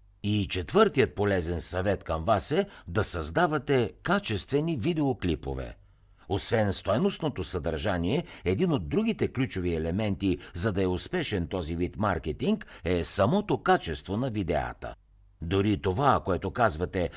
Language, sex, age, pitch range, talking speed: Bulgarian, male, 60-79, 85-125 Hz, 120 wpm